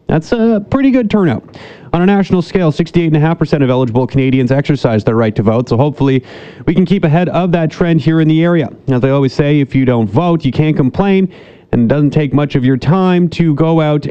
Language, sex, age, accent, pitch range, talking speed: English, male, 30-49, American, 130-160 Hz, 240 wpm